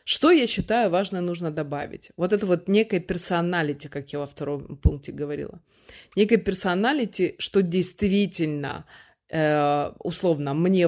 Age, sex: 20-39, female